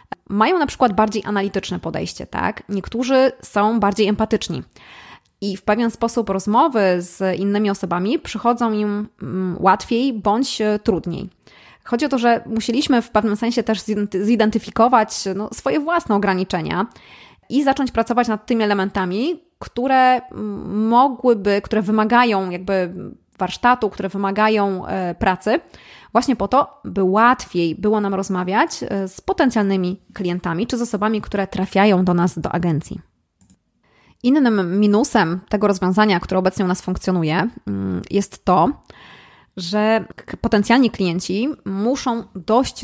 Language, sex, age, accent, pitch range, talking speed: Polish, female, 20-39, native, 190-230 Hz, 125 wpm